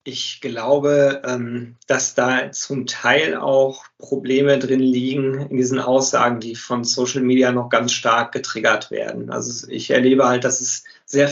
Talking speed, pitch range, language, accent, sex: 155 wpm, 125-145 Hz, German, German, male